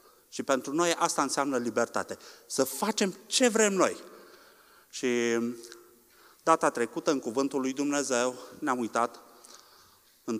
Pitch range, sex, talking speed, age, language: 115-160 Hz, male, 120 wpm, 30-49, Romanian